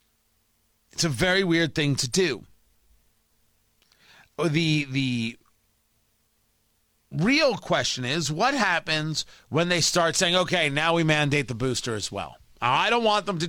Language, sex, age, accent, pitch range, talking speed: English, male, 40-59, American, 115-170 Hz, 140 wpm